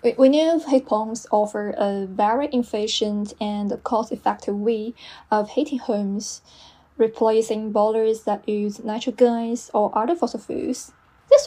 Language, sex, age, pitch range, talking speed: English, female, 10-29, 215-245 Hz, 130 wpm